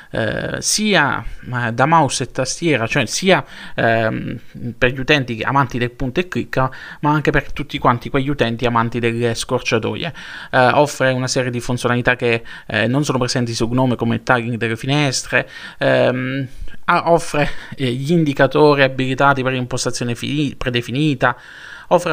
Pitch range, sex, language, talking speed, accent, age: 120-145 Hz, male, Italian, 150 wpm, native, 20-39